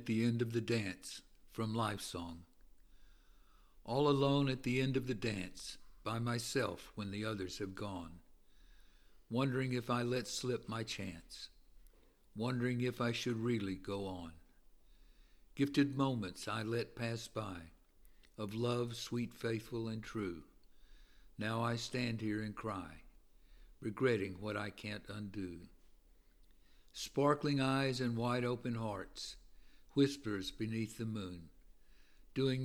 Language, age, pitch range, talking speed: English, 60-79, 95-120 Hz, 130 wpm